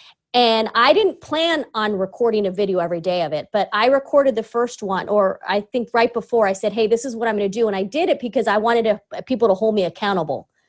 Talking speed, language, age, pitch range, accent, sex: 245 wpm, English, 30-49, 205-275 Hz, American, female